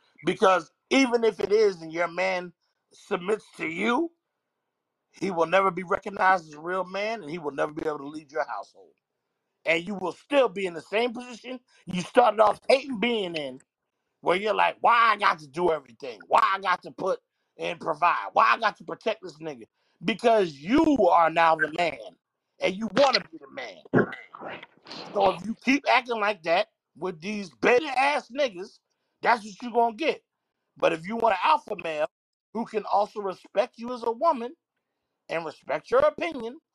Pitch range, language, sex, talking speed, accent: 185-255 Hz, English, male, 195 wpm, American